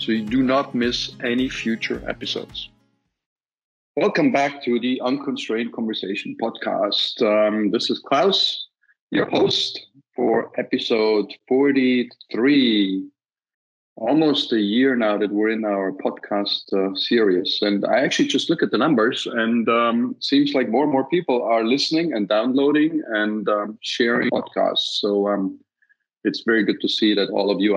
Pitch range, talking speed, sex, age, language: 100-125 Hz, 150 wpm, male, 40-59, English